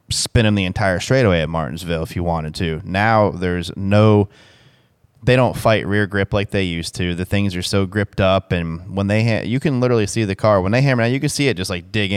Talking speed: 245 wpm